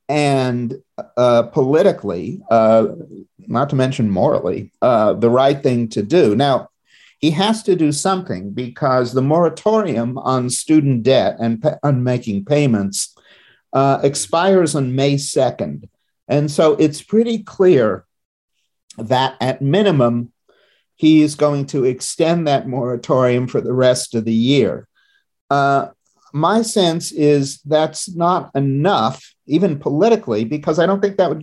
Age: 50-69